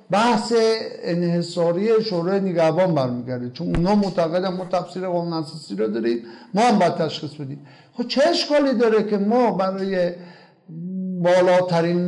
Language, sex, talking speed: Persian, male, 135 wpm